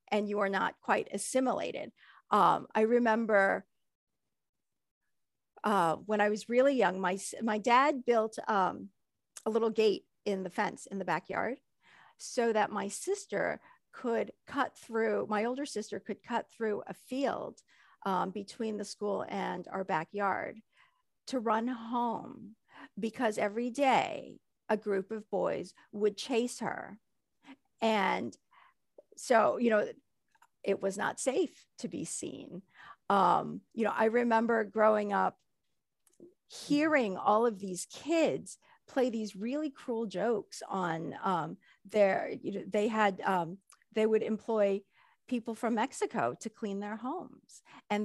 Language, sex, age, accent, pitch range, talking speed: English, female, 50-69, American, 205-255 Hz, 140 wpm